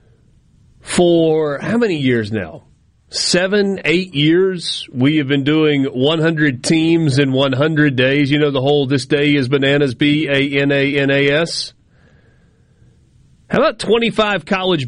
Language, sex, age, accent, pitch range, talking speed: English, male, 40-59, American, 140-175 Hz, 120 wpm